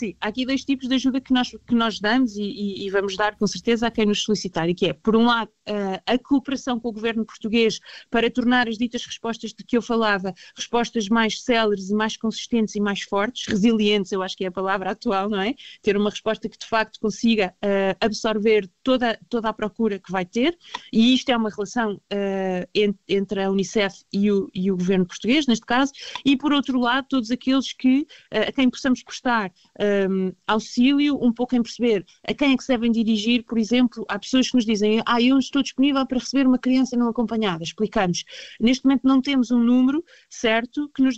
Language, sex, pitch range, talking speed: Portuguese, female, 205-250 Hz, 210 wpm